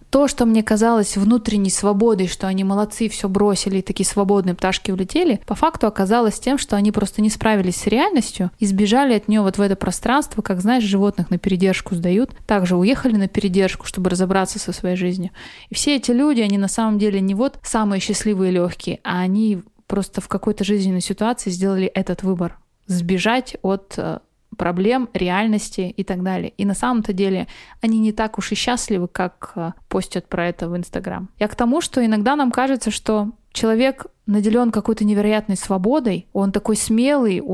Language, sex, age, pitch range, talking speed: Russian, female, 20-39, 190-225 Hz, 180 wpm